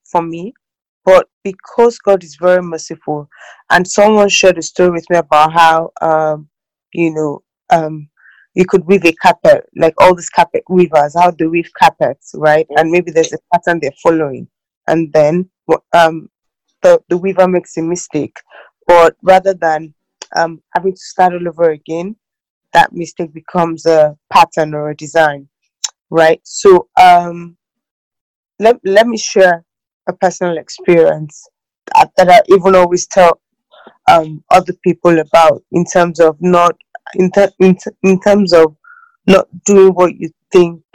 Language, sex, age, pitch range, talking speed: English, female, 20-39, 165-195 Hz, 155 wpm